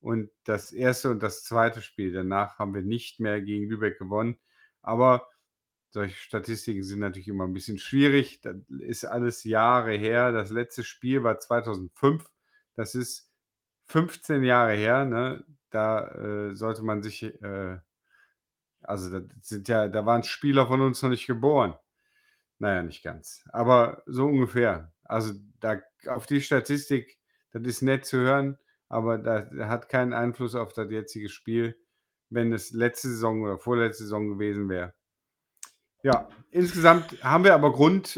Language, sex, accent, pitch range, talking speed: German, male, German, 110-140 Hz, 155 wpm